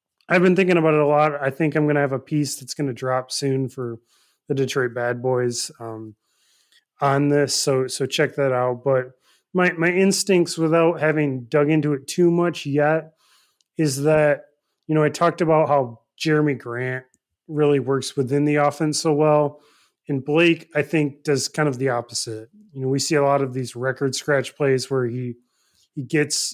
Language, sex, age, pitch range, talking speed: English, male, 30-49, 130-155 Hz, 195 wpm